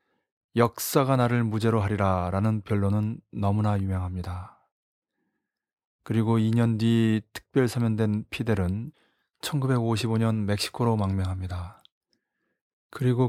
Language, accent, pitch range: Korean, native, 105-125 Hz